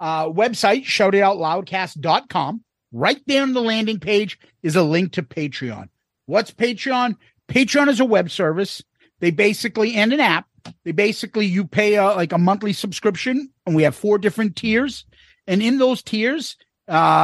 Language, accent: English, American